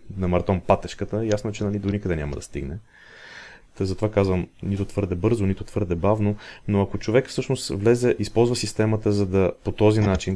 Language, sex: Bulgarian, male